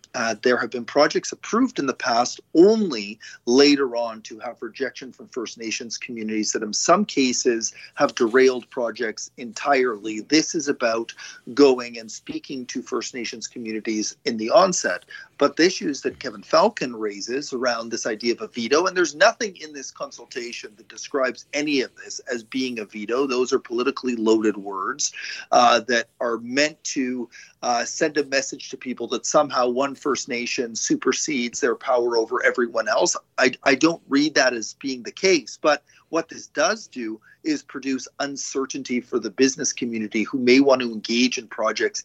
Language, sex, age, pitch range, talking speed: English, male, 40-59, 120-160 Hz, 175 wpm